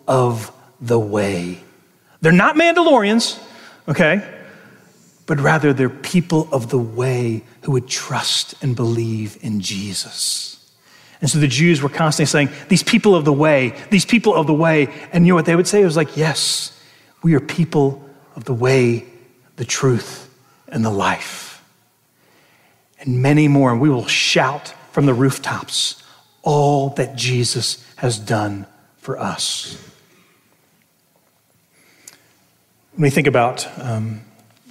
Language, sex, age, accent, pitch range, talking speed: English, male, 40-59, American, 130-180 Hz, 140 wpm